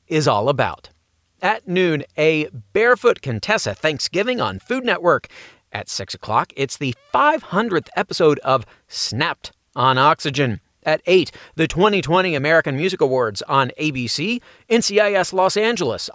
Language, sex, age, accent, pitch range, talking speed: English, male, 40-59, American, 135-195 Hz, 130 wpm